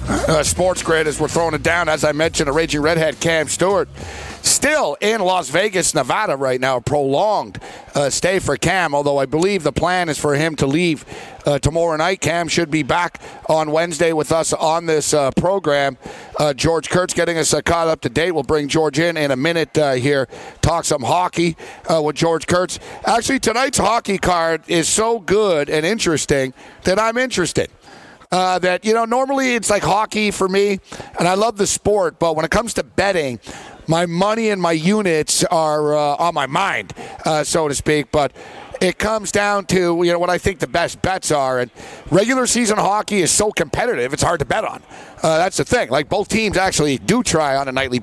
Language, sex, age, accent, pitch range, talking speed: English, male, 50-69, American, 150-195 Hz, 205 wpm